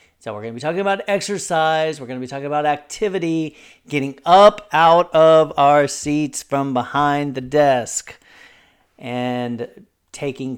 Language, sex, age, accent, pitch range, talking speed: English, male, 40-59, American, 125-165 Hz, 140 wpm